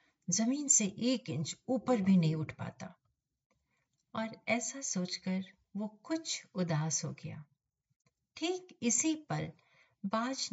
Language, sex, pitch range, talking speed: Hindi, female, 155-220 Hz, 120 wpm